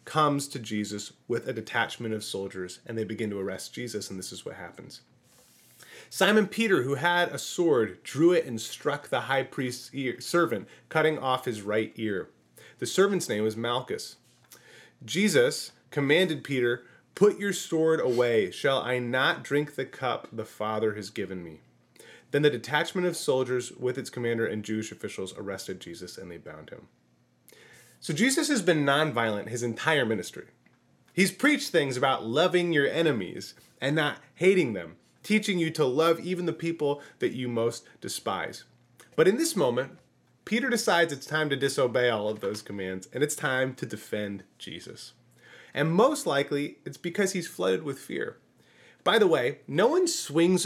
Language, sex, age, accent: English, male, 30-49, American